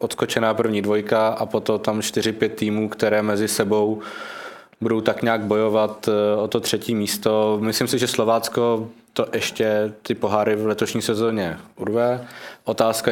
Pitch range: 105-115 Hz